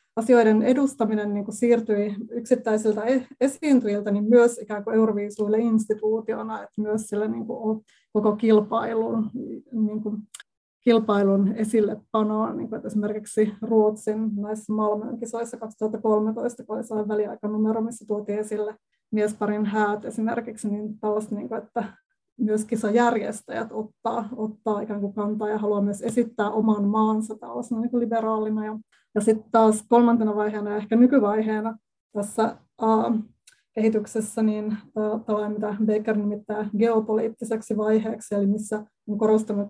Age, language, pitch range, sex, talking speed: 20-39, Finnish, 210-230 Hz, female, 130 wpm